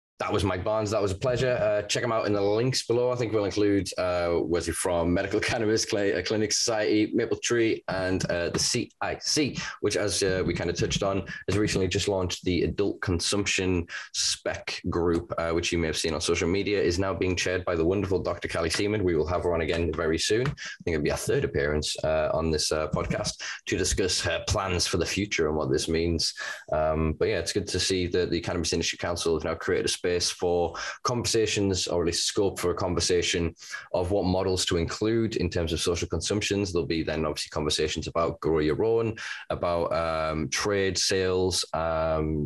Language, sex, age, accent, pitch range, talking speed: English, male, 10-29, British, 85-105 Hz, 220 wpm